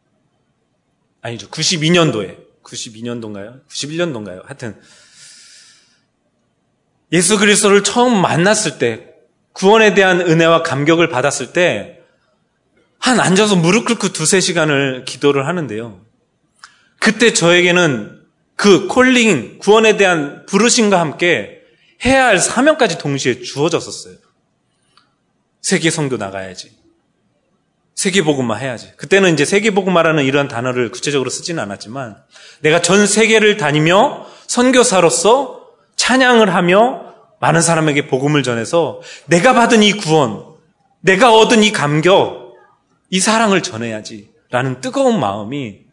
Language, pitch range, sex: Korean, 140-210 Hz, male